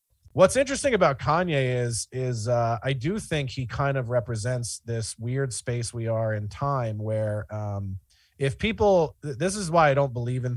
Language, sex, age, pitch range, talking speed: English, male, 30-49, 110-140 Hz, 180 wpm